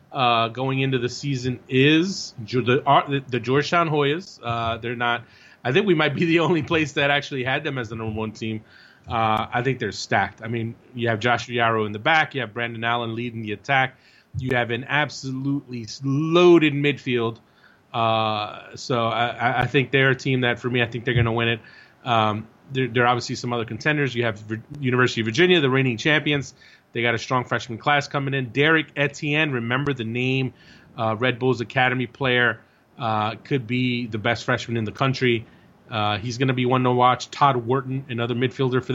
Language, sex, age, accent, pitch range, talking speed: English, male, 30-49, American, 115-140 Hz, 200 wpm